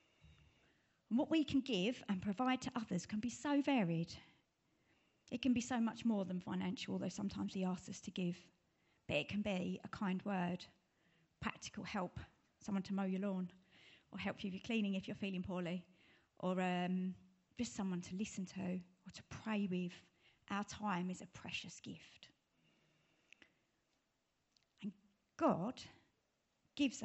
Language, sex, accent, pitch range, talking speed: English, female, British, 185-215 Hz, 155 wpm